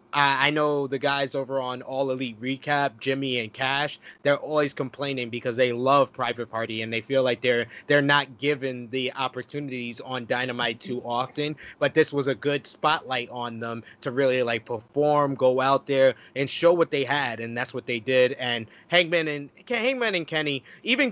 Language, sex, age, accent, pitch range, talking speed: English, male, 20-39, American, 130-175 Hz, 190 wpm